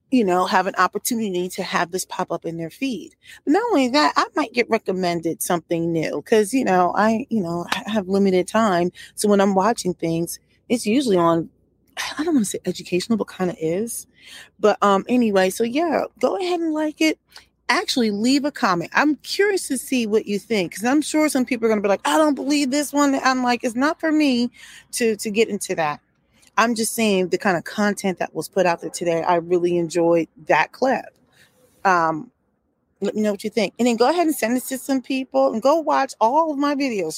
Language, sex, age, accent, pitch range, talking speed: English, female, 30-49, American, 180-270 Hz, 225 wpm